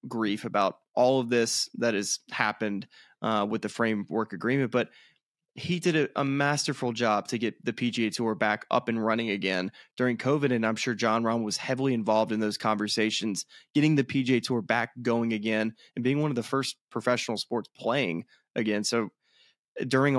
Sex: male